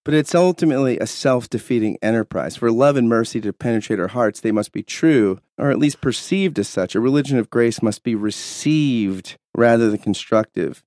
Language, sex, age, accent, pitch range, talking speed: English, male, 30-49, American, 105-155 Hz, 190 wpm